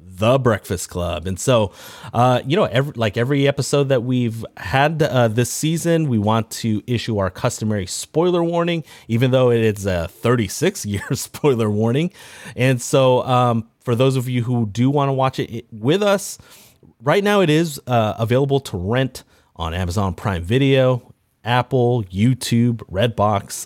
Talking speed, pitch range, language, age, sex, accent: 165 wpm, 110-145 Hz, English, 30-49, male, American